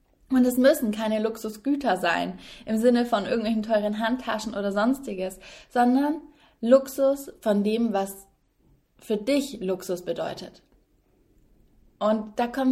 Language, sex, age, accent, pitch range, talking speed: German, female, 20-39, German, 210-250 Hz, 125 wpm